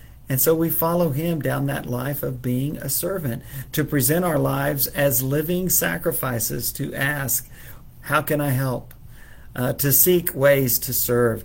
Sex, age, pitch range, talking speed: male, 50-69, 120-150 Hz, 160 wpm